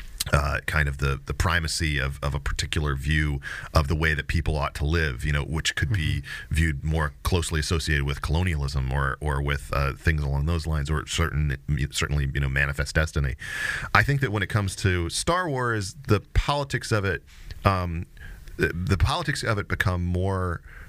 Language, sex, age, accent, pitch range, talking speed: English, male, 40-59, American, 70-85 Hz, 190 wpm